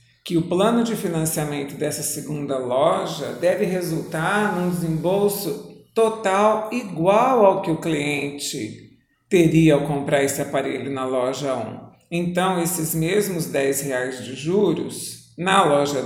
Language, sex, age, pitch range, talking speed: Portuguese, male, 50-69, 140-175 Hz, 125 wpm